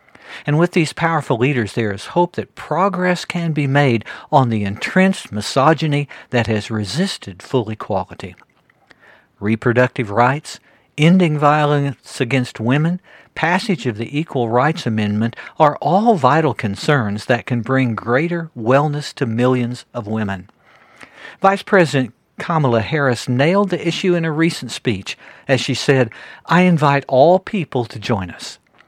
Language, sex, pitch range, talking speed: English, male, 115-165 Hz, 140 wpm